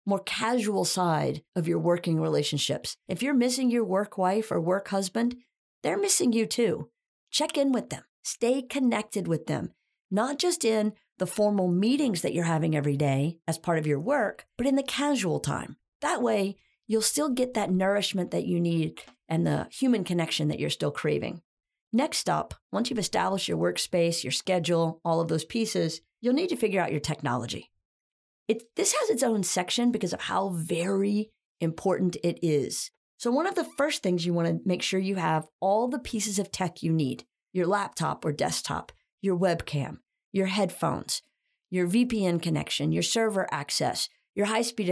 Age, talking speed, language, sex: 40-59, 180 wpm, English, female